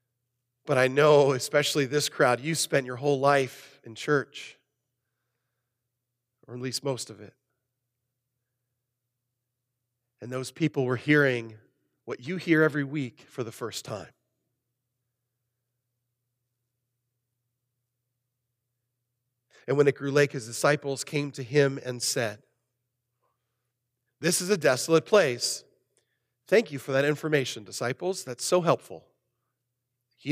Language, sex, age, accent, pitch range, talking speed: English, male, 40-59, American, 125-170 Hz, 120 wpm